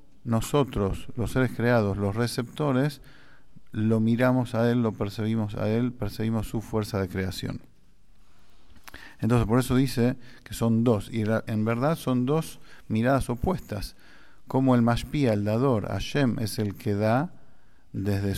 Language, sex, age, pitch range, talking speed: English, male, 50-69, 110-130 Hz, 145 wpm